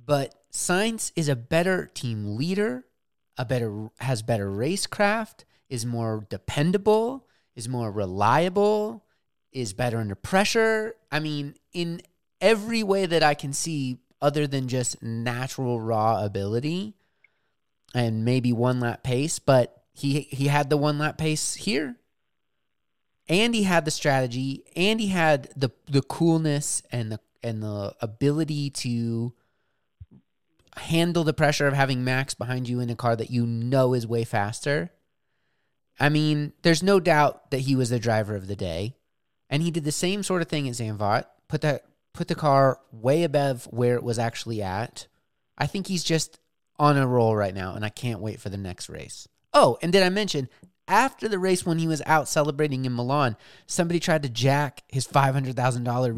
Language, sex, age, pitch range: English, male, 30-49, 120-165 Hz